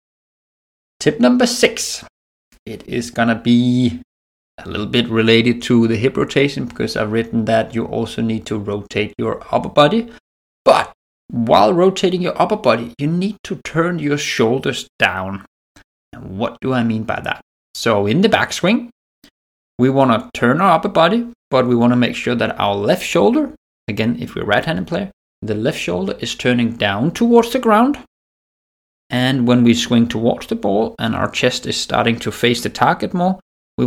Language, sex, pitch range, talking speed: English, male, 110-130 Hz, 180 wpm